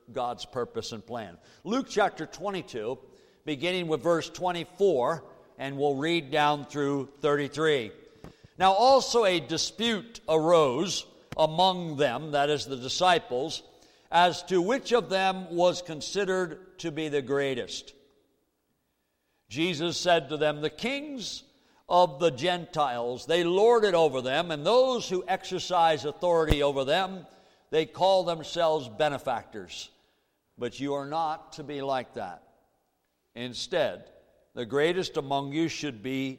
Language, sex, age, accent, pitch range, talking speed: English, male, 60-79, American, 140-190 Hz, 130 wpm